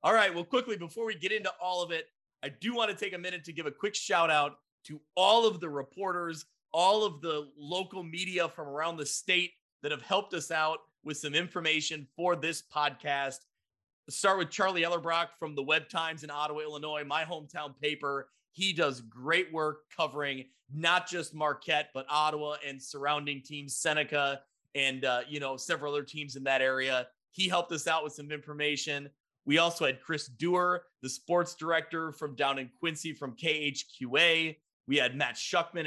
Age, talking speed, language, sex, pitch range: 30-49, 190 wpm, English, male, 140-170 Hz